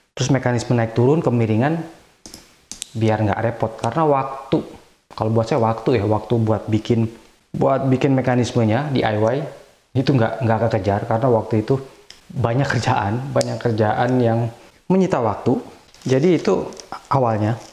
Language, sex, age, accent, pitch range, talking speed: Indonesian, male, 20-39, native, 110-135 Hz, 130 wpm